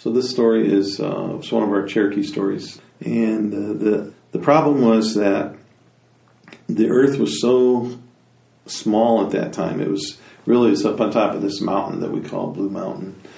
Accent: American